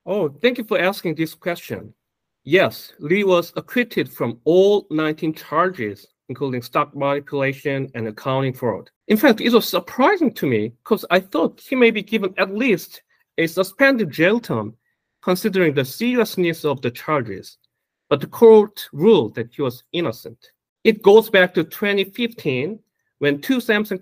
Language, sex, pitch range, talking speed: English, male, 140-215 Hz, 155 wpm